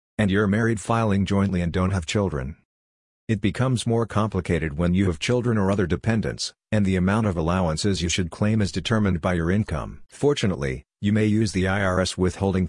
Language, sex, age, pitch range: English, male, 50-69, 90-105 Hz